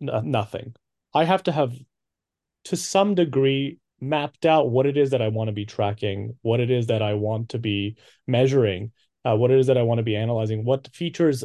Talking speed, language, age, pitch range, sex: 210 wpm, English, 30-49, 110-150 Hz, male